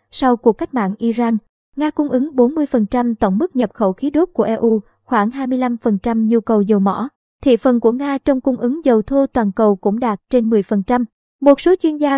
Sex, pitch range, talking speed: male, 220-265 Hz, 205 wpm